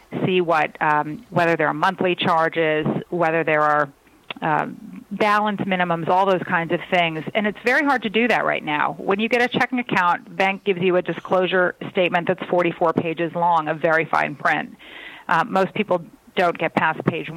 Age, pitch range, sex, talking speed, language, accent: 30-49, 165-195 Hz, female, 190 wpm, English, American